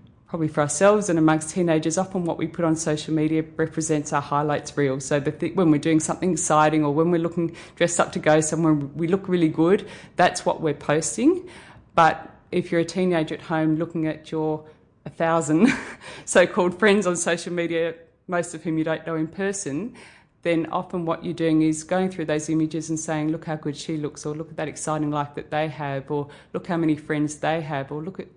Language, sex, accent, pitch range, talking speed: English, female, Australian, 150-170 Hz, 215 wpm